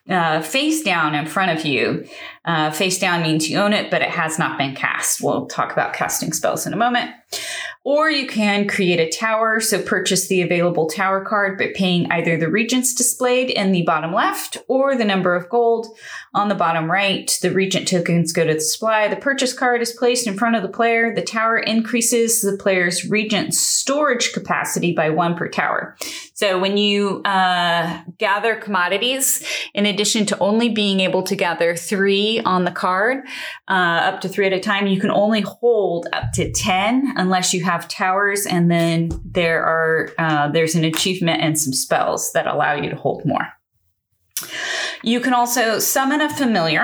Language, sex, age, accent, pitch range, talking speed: English, female, 30-49, American, 175-230 Hz, 190 wpm